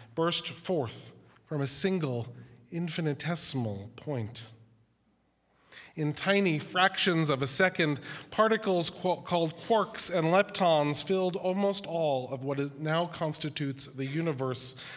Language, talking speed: English, 110 wpm